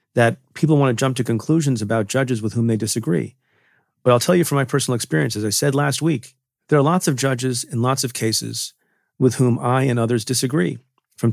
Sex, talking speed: male, 220 wpm